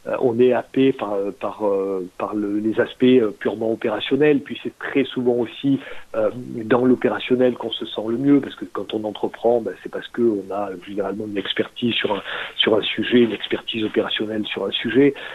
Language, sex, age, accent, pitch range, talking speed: French, male, 40-59, French, 115-140 Hz, 175 wpm